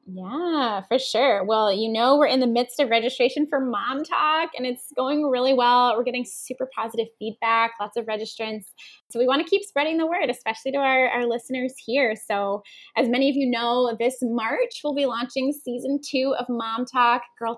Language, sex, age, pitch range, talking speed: English, female, 10-29, 215-275 Hz, 200 wpm